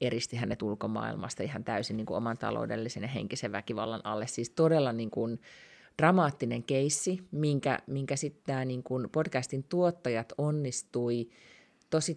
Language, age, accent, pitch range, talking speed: Finnish, 30-49, native, 120-145 Hz, 145 wpm